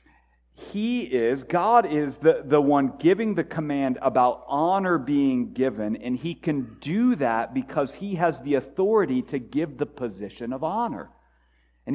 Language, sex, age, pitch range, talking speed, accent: English, male, 50-69, 125-190 Hz, 155 wpm, American